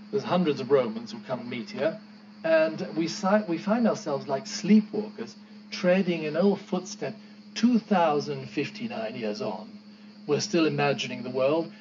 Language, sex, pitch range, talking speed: English, male, 145-210 Hz, 145 wpm